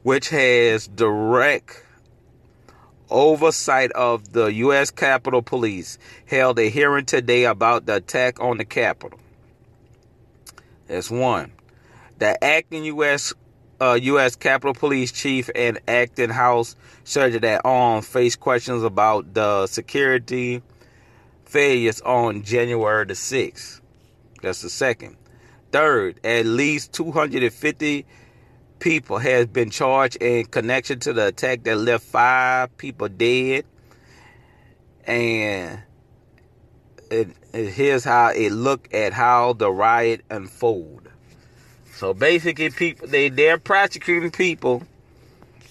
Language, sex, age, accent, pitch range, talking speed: English, male, 40-59, American, 115-135 Hz, 115 wpm